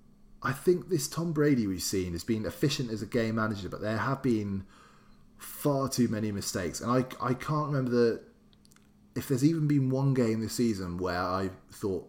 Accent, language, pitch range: British, English, 95-125 Hz